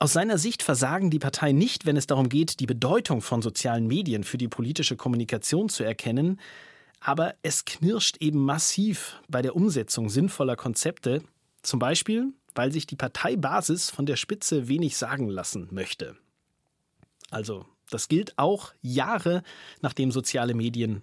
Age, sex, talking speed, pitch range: 30-49, male, 150 wpm, 120-165 Hz